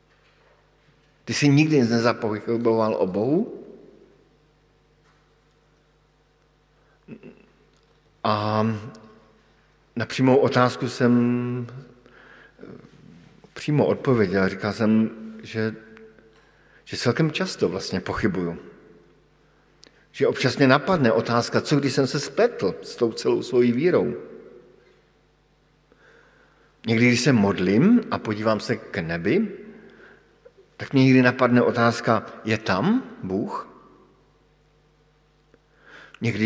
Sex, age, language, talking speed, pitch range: male, 50-69, Slovak, 85 wpm, 115-150 Hz